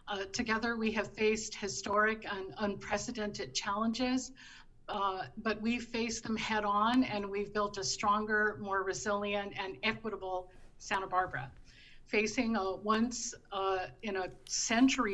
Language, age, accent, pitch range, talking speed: English, 50-69, American, 195-220 Hz, 115 wpm